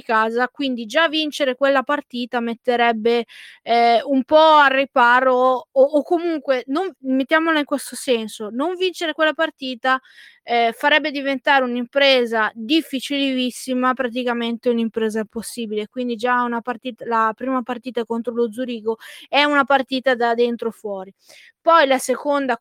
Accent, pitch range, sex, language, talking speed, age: native, 230-275 Hz, female, Italian, 135 wpm, 20-39